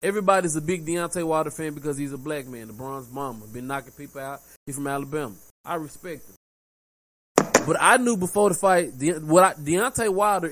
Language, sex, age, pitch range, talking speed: English, male, 20-39, 135-180 Hz, 200 wpm